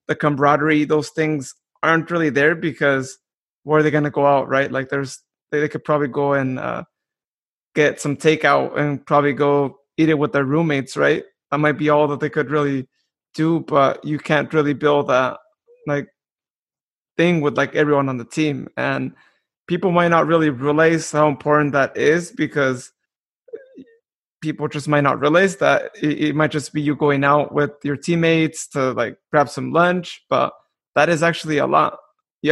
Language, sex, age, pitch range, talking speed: English, male, 20-39, 145-160 Hz, 185 wpm